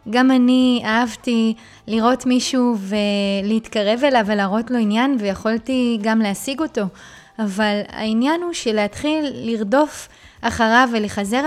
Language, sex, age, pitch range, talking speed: Hebrew, female, 20-39, 215-255 Hz, 110 wpm